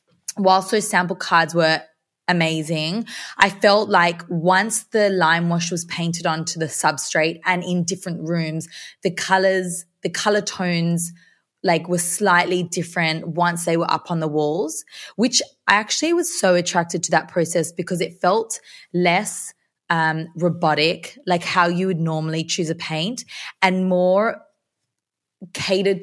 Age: 20-39